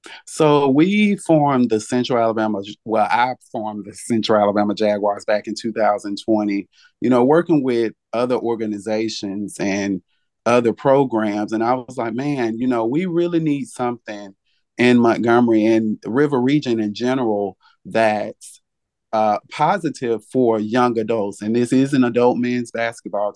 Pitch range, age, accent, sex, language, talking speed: 105-125 Hz, 30-49, American, male, English, 145 wpm